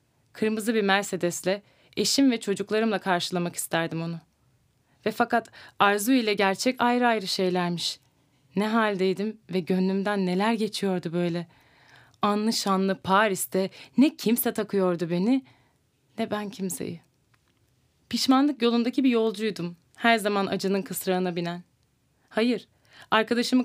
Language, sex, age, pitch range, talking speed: Turkish, female, 30-49, 175-235 Hz, 115 wpm